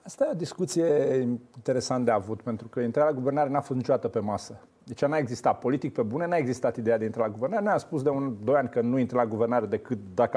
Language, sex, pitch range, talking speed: Romanian, male, 115-150 Hz, 250 wpm